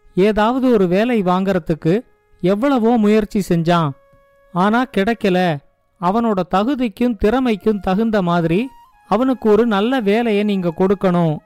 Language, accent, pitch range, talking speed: Tamil, native, 180-235 Hz, 105 wpm